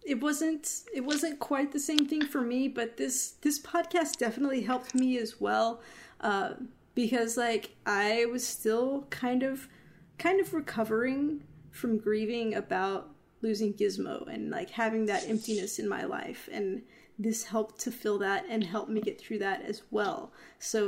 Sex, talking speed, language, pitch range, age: female, 165 wpm, English, 210-255 Hz, 30-49